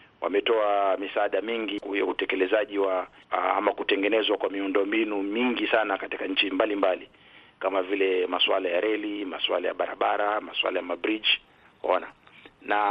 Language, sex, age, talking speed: Swahili, male, 50-69, 135 wpm